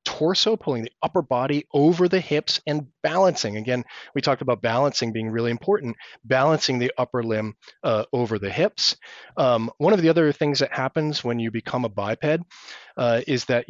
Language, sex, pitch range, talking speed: English, male, 115-160 Hz, 185 wpm